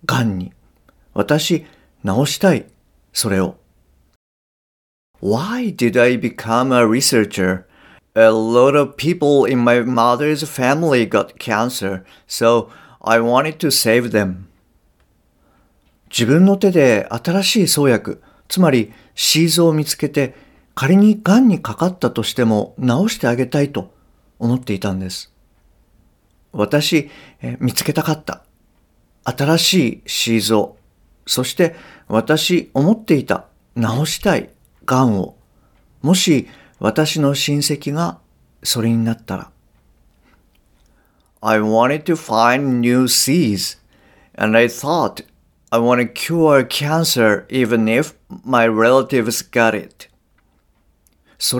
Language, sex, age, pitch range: Japanese, male, 50-69, 110-155 Hz